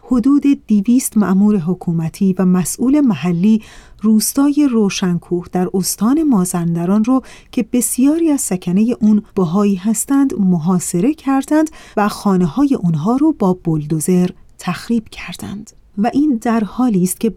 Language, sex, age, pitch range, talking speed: Persian, female, 40-59, 180-245 Hz, 130 wpm